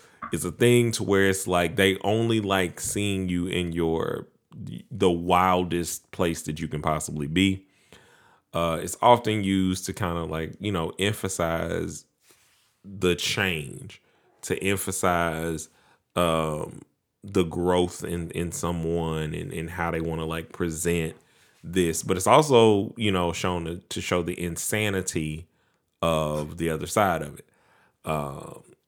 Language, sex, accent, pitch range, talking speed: English, male, American, 80-95 Hz, 145 wpm